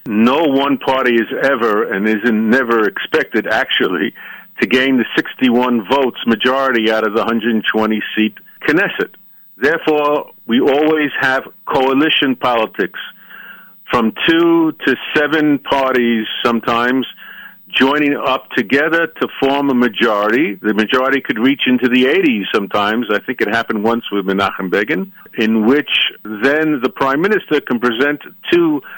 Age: 50-69